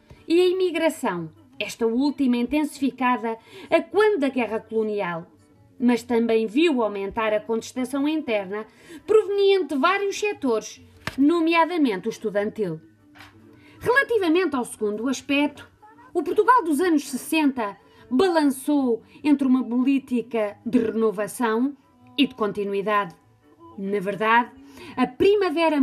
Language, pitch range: Portuguese, 210-300 Hz